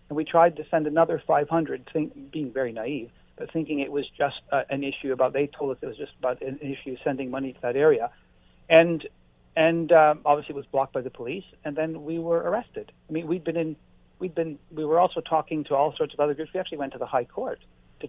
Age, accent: 60-79, American